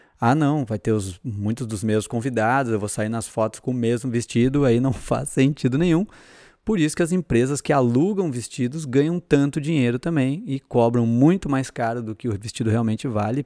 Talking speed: 205 wpm